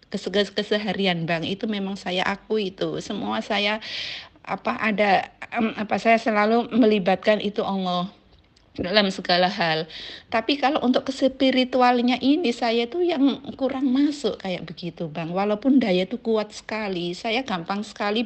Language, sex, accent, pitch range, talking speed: Indonesian, female, native, 185-245 Hz, 140 wpm